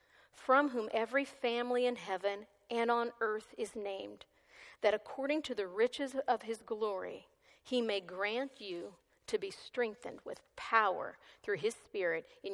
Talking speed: 155 wpm